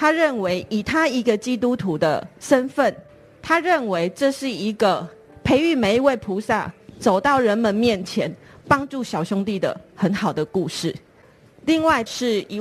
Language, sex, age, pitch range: Chinese, female, 30-49, 185-245 Hz